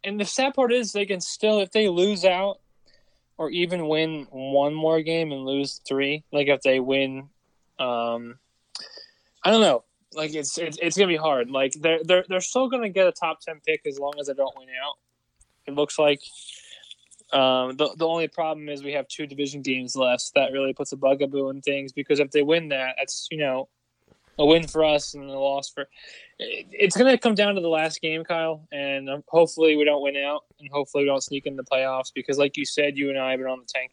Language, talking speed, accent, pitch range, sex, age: English, 235 wpm, American, 135-170 Hz, male, 20-39